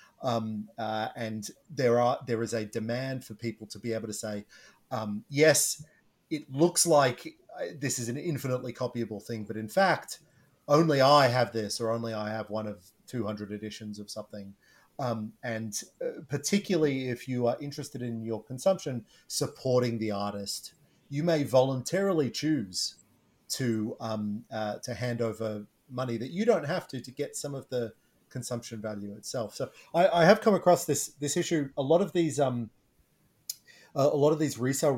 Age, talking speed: 30-49, 175 wpm